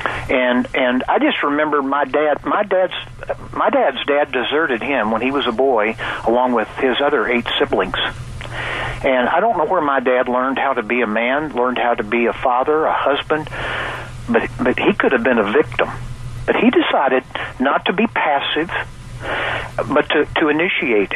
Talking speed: 185 wpm